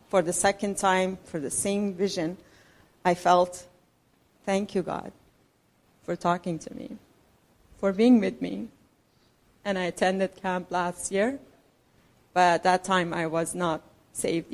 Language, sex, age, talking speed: English, female, 40-59, 145 wpm